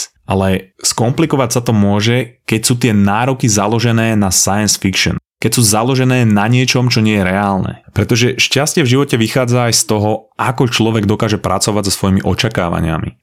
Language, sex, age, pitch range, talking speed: Slovak, male, 30-49, 95-115 Hz, 170 wpm